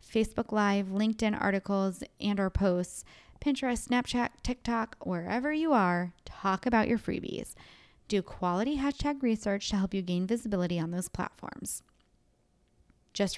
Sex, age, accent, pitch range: female, 20-39, American, 195-250 Hz